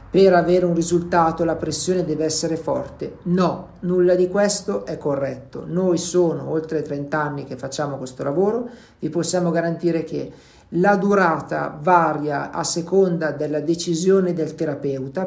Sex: male